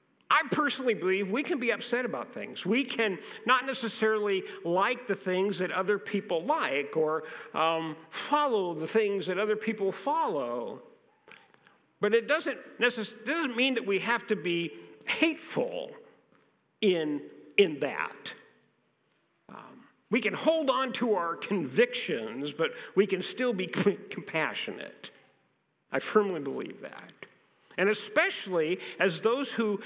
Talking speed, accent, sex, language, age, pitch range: 135 wpm, American, male, English, 50-69, 185-245 Hz